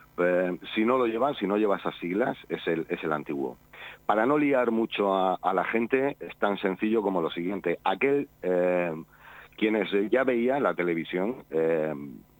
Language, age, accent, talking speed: Spanish, 40-59, Spanish, 175 wpm